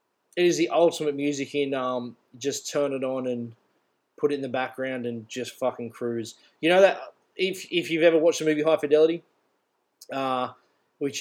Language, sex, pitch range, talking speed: English, male, 125-145 Hz, 185 wpm